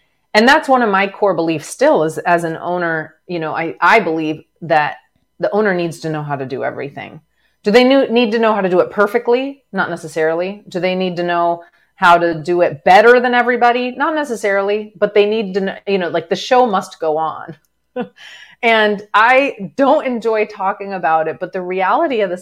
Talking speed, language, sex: 210 wpm, English, female